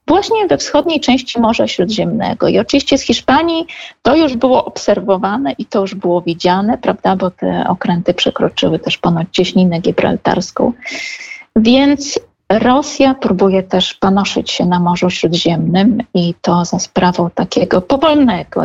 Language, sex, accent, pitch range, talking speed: Polish, female, native, 185-240 Hz, 140 wpm